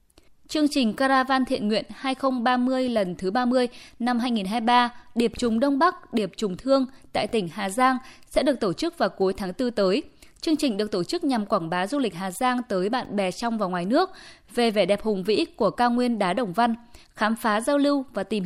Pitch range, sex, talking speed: 205-265 Hz, female, 220 wpm